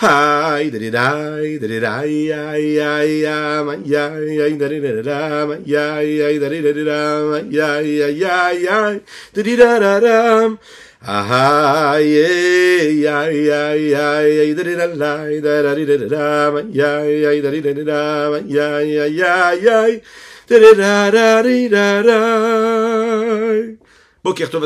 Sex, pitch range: male, 105-150 Hz